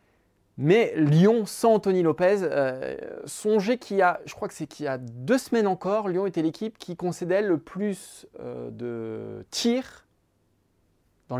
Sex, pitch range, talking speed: male, 145-200 Hz, 165 wpm